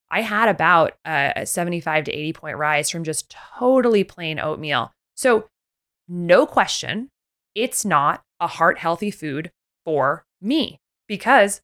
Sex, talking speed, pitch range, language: female, 135 wpm, 155-210 Hz, English